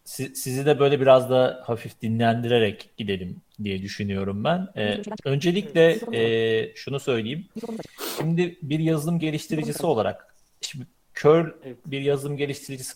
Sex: male